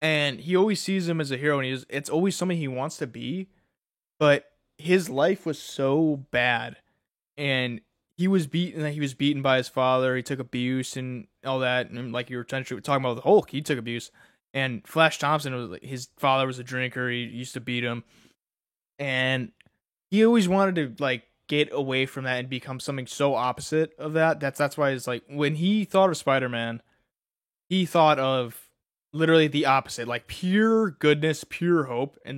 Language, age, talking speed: English, 20-39, 195 wpm